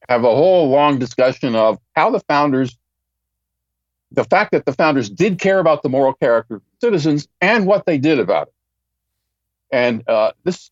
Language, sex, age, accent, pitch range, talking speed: English, male, 50-69, American, 110-160 Hz, 175 wpm